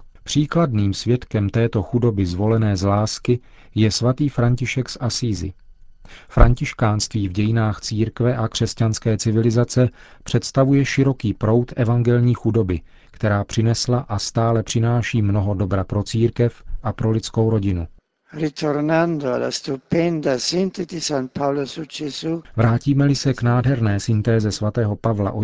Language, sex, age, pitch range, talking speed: Czech, male, 40-59, 105-125 Hz, 105 wpm